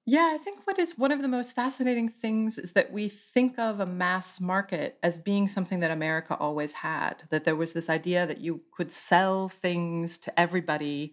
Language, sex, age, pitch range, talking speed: English, female, 30-49, 150-205 Hz, 205 wpm